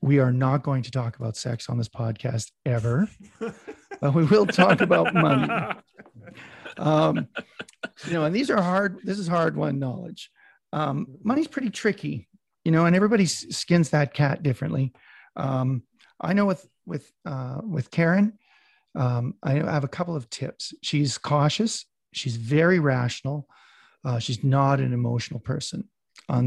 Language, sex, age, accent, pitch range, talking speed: English, male, 40-59, American, 130-170 Hz, 155 wpm